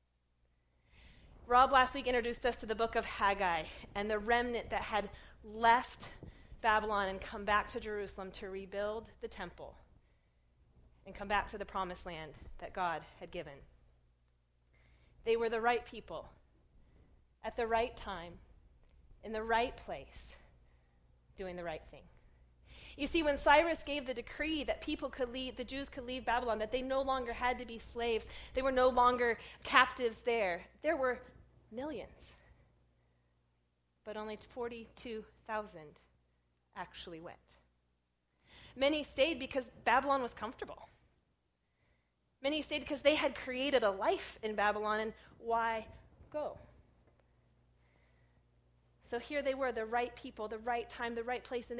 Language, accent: English, American